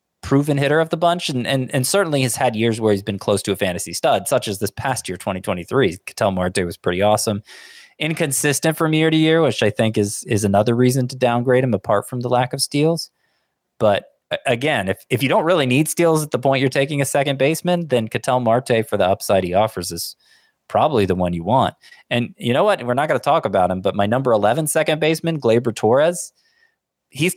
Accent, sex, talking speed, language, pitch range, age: American, male, 225 wpm, English, 105-150 Hz, 20-39